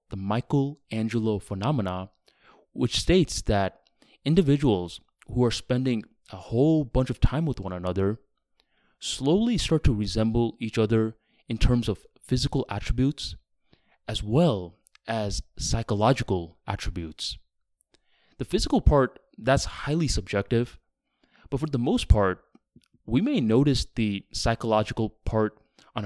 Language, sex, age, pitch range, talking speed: English, male, 20-39, 100-125 Hz, 120 wpm